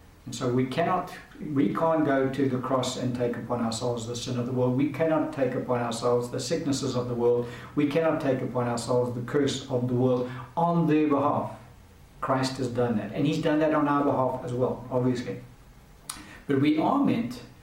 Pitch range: 125-155 Hz